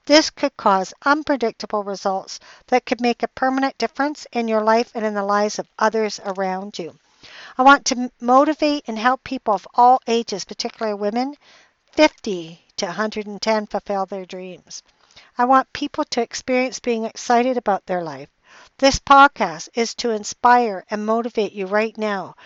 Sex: female